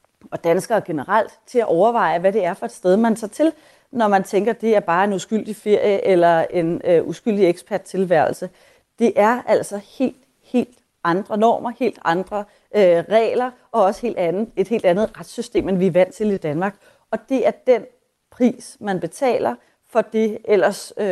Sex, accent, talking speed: female, native, 175 wpm